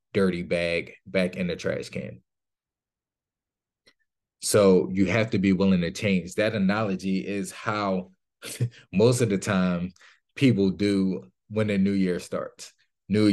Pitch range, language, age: 95-105 Hz, English, 20-39